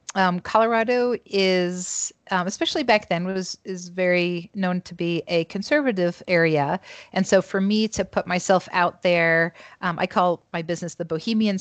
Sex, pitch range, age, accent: female, 165-195 Hz, 40-59, American